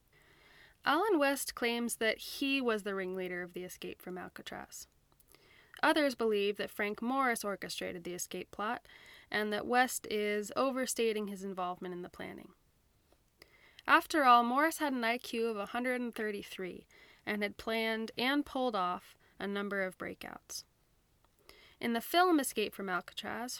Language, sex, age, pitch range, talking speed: English, female, 20-39, 200-260 Hz, 140 wpm